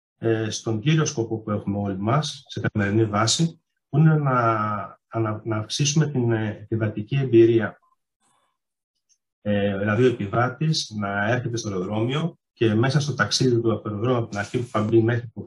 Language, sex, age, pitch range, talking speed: Greek, male, 30-49, 105-125 Hz, 160 wpm